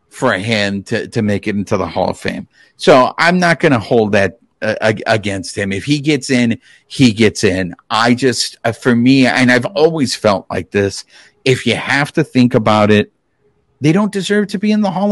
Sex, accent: male, American